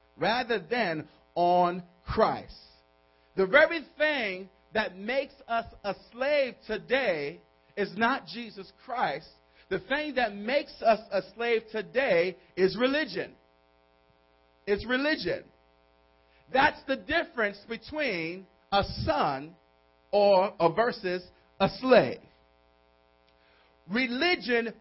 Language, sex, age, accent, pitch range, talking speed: English, male, 40-59, American, 185-255 Hz, 100 wpm